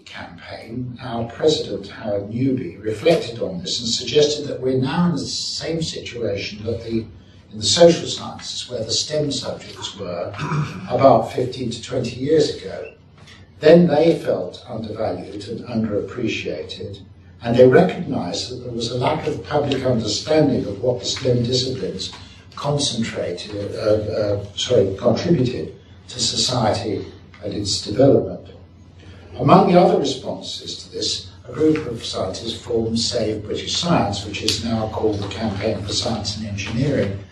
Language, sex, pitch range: English, male, 100-130 Hz